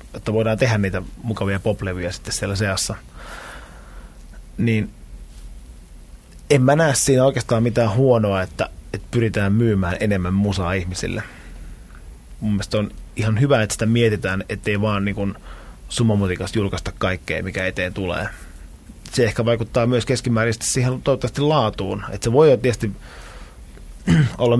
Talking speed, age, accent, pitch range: 135 wpm, 20-39, native, 90-110 Hz